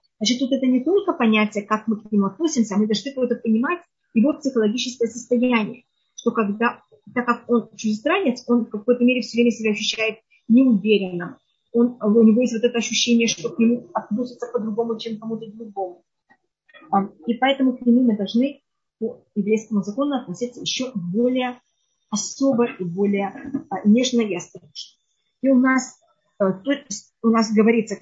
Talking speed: 155 wpm